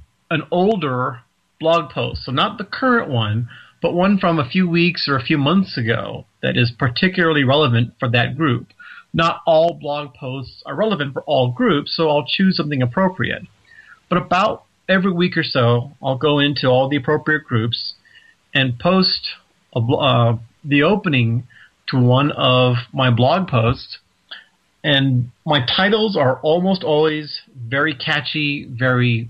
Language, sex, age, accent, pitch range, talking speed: English, male, 40-59, American, 125-160 Hz, 155 wpm